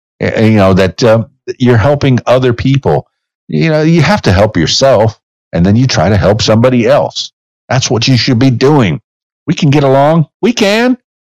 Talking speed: 185 wpm